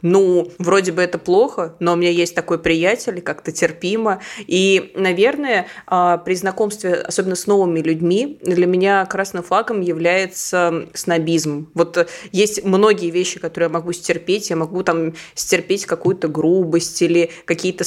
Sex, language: female, Russian